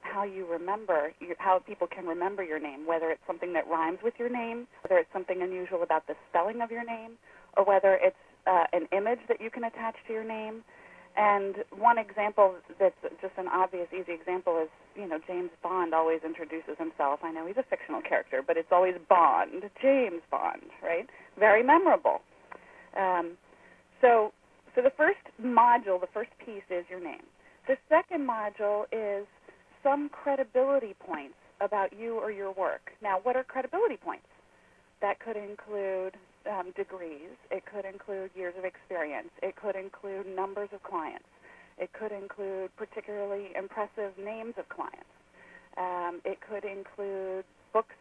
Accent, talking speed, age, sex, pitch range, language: American, 165 wpm, 40-59, female, 180-225 Hz, English